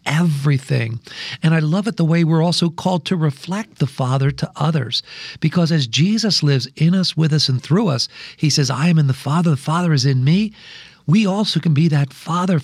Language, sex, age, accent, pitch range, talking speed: English, male, 50-69, American, 140-175 Hz, 215 wpm